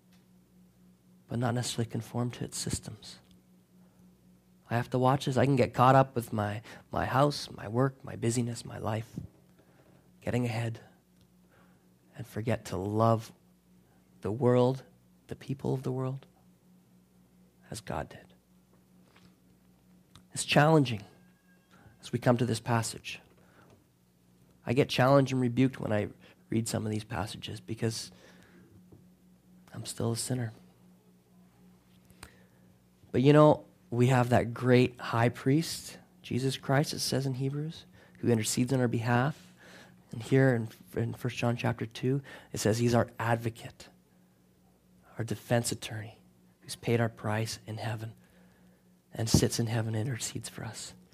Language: English